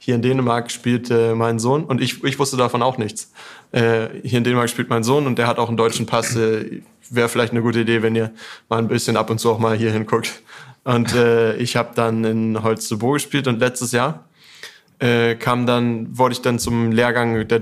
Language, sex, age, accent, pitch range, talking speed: German, male, 20-39, German, 115-125 Hz, 225 wpm